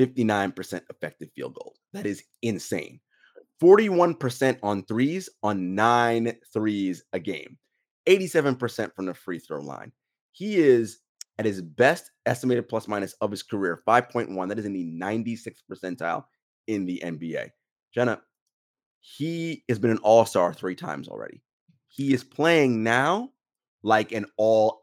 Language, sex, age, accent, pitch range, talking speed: English, male, 30-49, American, 100-130 Hz, 140 wpm